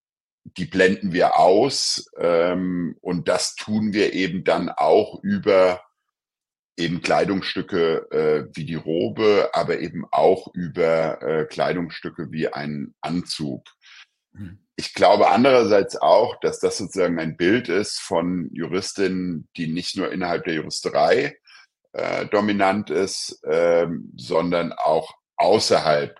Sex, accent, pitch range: male, German, 85-120 Hz